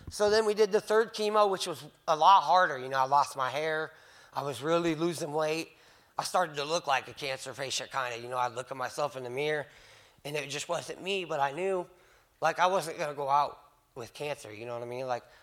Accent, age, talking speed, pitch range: American, 20-39, 255 wpm, 145-195 Hz